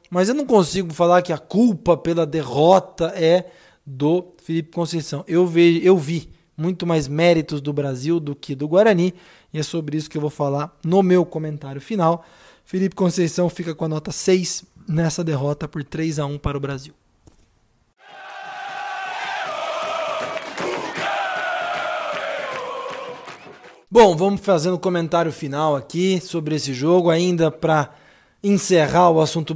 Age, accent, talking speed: 20-39, Brazilian, 140 wpm